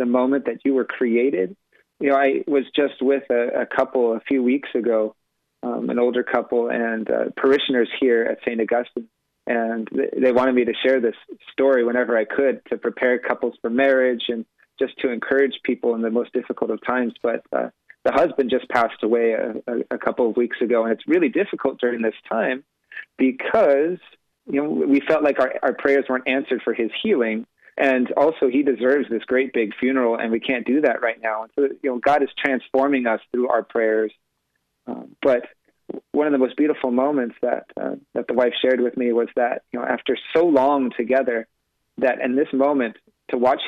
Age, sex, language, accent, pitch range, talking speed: 30-49, male, English, American, 120-135 Hz, 205 wpm